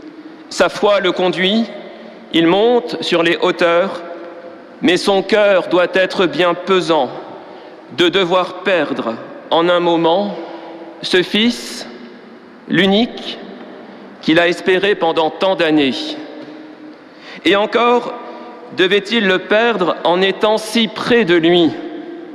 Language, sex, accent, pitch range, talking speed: French, male, French, 175-235 Hz, 115 wpm